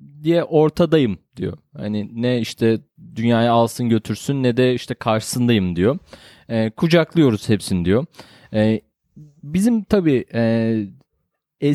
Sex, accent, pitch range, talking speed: male, native, 110-160 Hz, 110 wpm